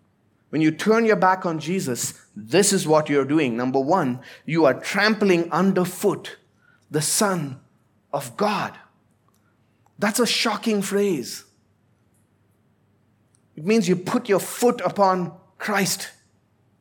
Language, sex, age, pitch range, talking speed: English, male, 20-39, 130-205 Hz, 120 wpm